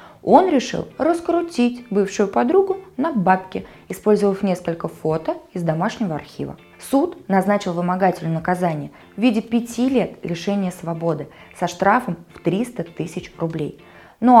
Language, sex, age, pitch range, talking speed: Russian, female, 20-39, 175-235 Hz, 125 wpm